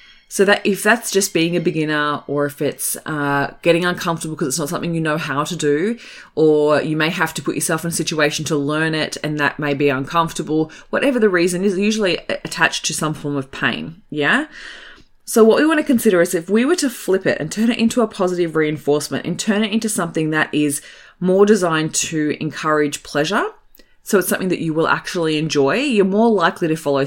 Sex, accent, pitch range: female, Australian, 150-190 Hz